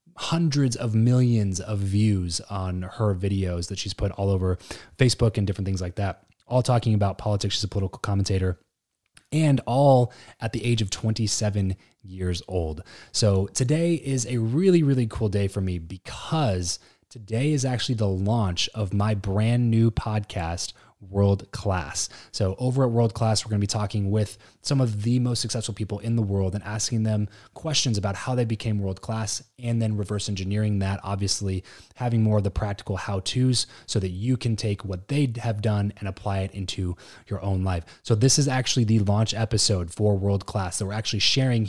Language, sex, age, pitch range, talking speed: English, male, 20-39, 100-120 Hz, 185 wpm